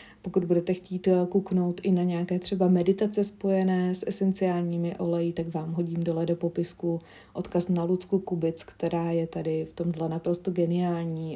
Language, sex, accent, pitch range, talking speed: Czech, female, native, 175-190 Hz, 160 wpm